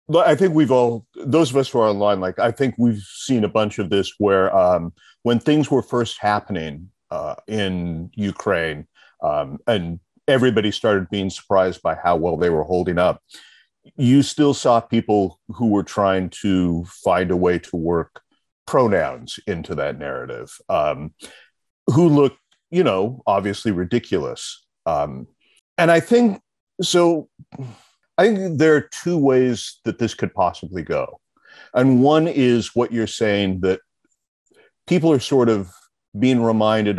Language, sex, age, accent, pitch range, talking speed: English, male, 40-59, American, 95-130 Hz, 155 wpm